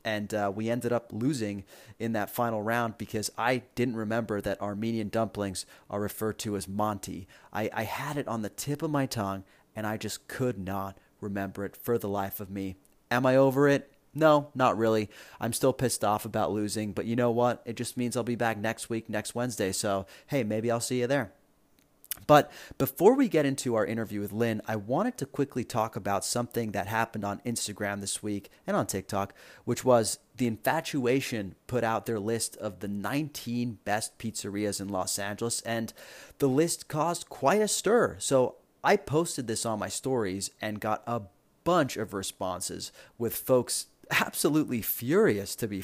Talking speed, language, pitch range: 190 wpm, English, 100-125 Hz